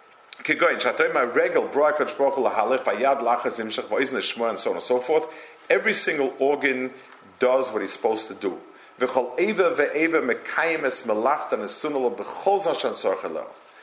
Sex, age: male, 50-69